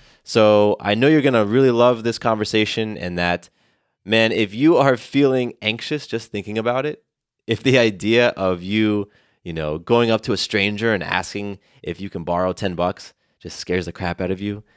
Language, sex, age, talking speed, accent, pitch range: English, male, 20-39, 200 wpm, American, 90-115 Hz